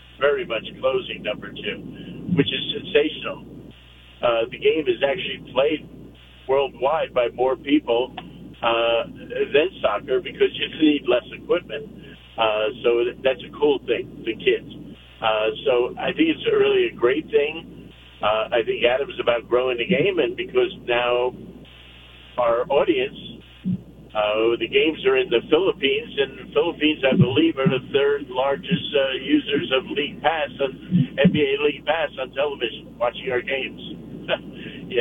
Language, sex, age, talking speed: English, male, 60-79, 150 wpm